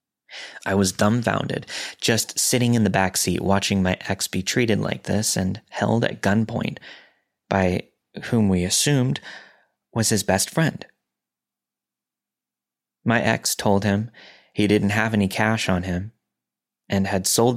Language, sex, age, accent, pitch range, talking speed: English, male, 20-39, American, 90-110 Hz, 145 wpm